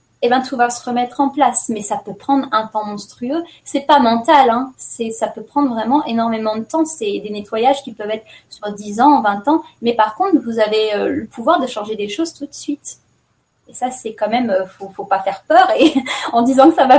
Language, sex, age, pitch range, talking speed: French, female, 20-39, 220-290 Hz, 245 wpm